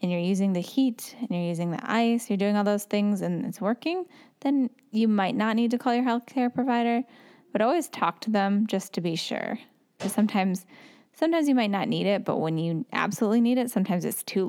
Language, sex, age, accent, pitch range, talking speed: English, female, 10-29, American, 195-240 Hz, 225 wpm